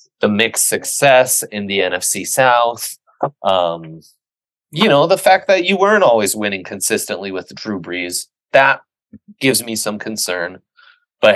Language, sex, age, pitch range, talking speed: English, male, 20-39, 85-110 Hz, 145 wpm